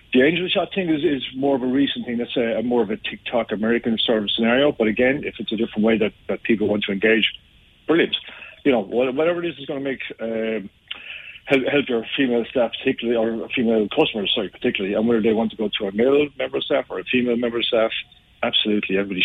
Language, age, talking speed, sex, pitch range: English, 40-59, 235 wpm, male, 105-125 Hz